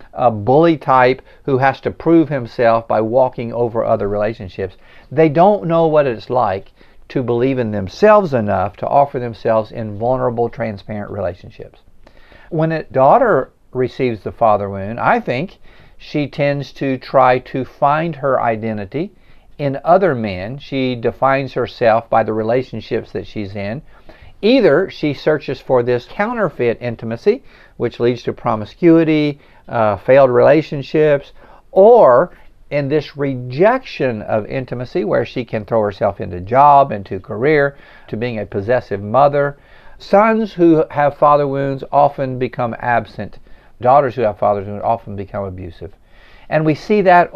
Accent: American